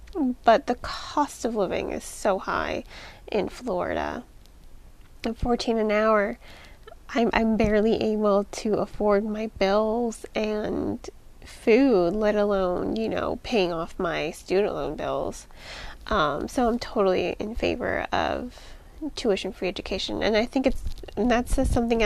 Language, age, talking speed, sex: English, 20-39, 140 wpm, female